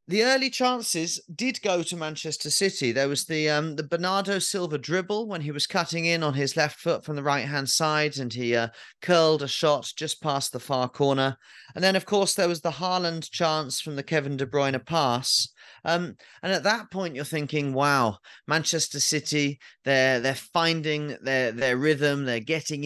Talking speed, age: 190 wpm, 30-49